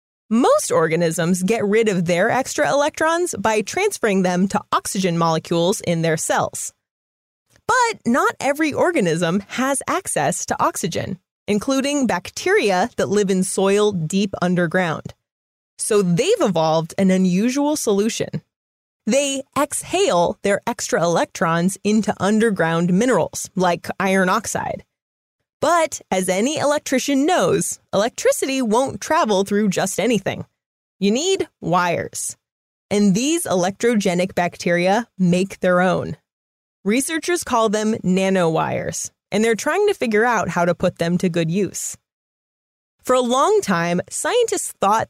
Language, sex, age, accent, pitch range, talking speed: English, female, 20-39, American, 185-260 Hz, 125 wpm